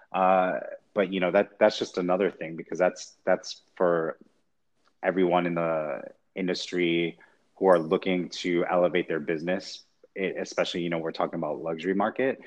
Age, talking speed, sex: 30-49, 155 wpm, male